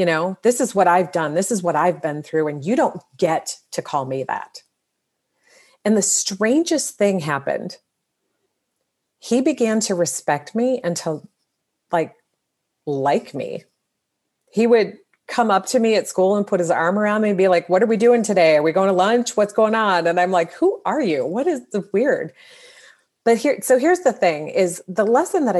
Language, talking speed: English, 200 wpm